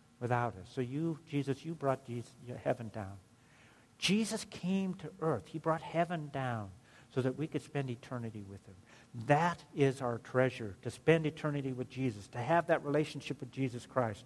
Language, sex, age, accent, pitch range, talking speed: English, male, 60-79, American, 120-165 Hz, 175 wpm